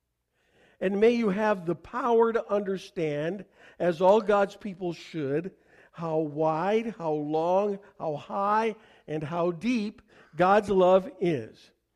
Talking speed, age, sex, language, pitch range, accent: 125 wpm, 50-69, male, English, 160-205 Hz, American